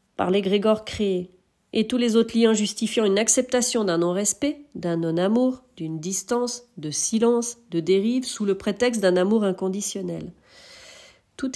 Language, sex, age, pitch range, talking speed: French, female, 40-59, 185-240 Hz, 145 wpm